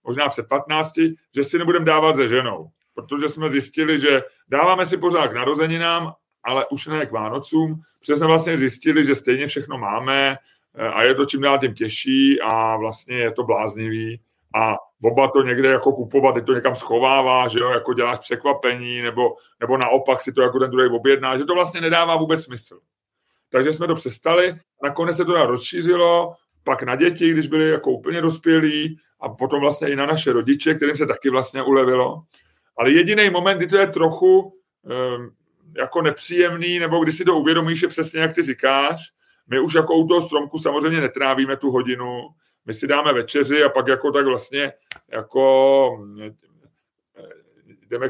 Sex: male